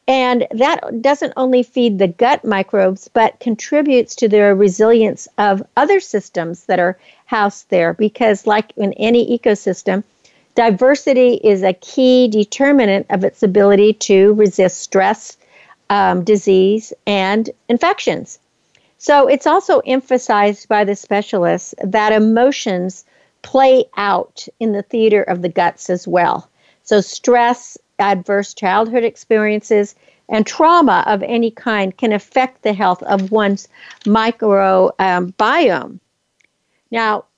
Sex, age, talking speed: female, 50-69, 125 wpm